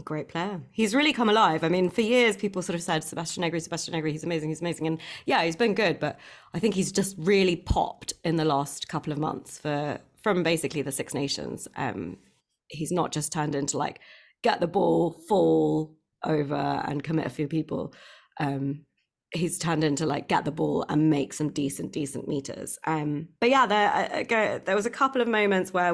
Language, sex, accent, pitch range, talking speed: English, female, British, 155-190 Hz, 210 wpm